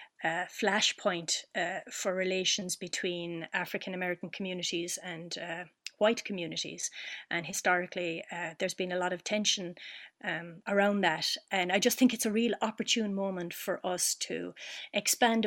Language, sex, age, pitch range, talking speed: English, female, 30-49, 175-205 Hz, 145 wpm